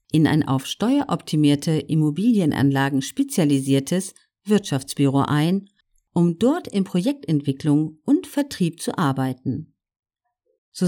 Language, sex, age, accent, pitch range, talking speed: German, female, 50-69, German, 135-200 Hz, 95 wpm